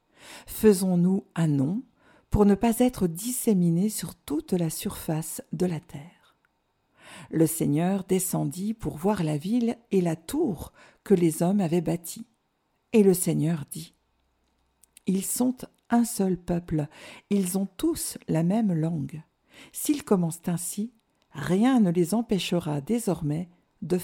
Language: French